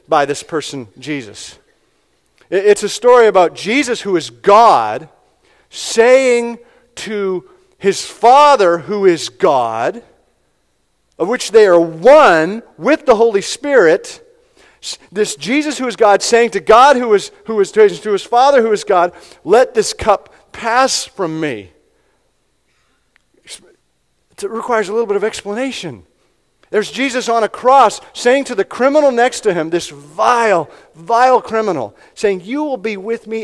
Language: English